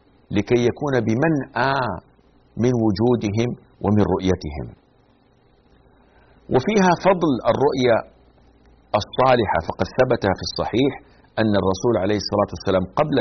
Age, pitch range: 50-69, 95-125 Hz